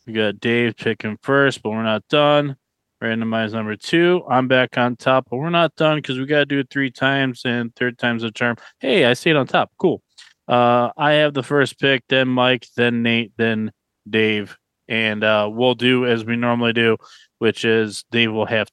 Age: 20-39